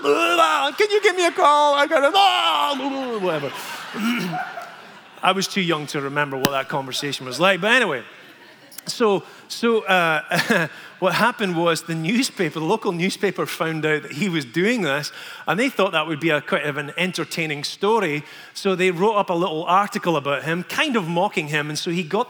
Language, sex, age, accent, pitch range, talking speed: English, male, 30-49, British, 165-225 Hz, 190 wpm